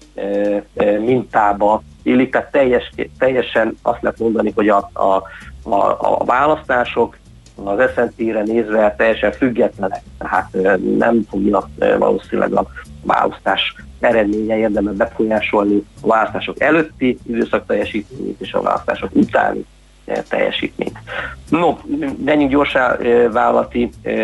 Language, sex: Hungarian, male